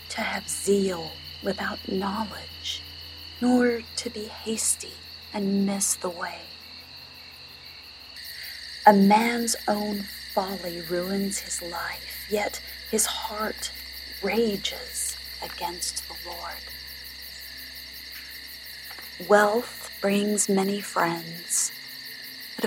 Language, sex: English, female